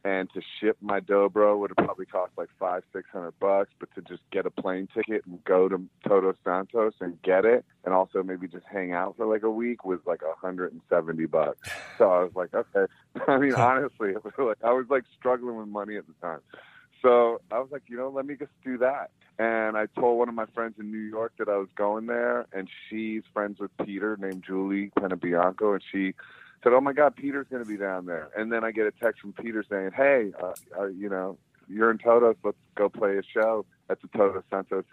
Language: English